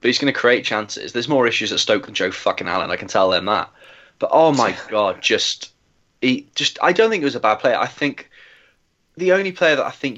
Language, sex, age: English, male, 20-39